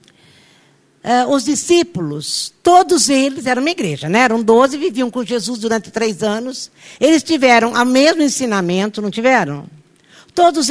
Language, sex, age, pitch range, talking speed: Portuguese, female, 50-69, 220-290 Hz, 140 wpm